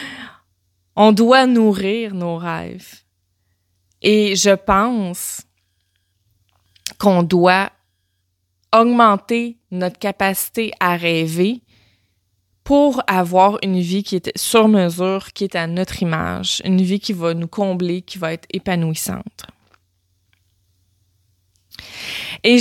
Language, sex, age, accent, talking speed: French, female, 20-39, Canadian, 105 wpm